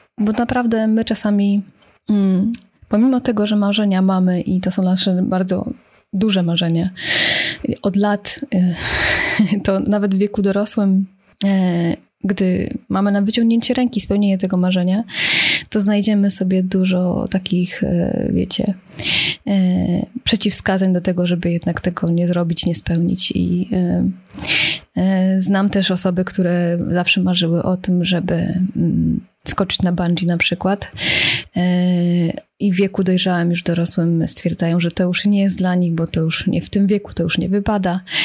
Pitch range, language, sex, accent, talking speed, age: 180-205 Hz, Polish, female, native, 140 wpm, 20-39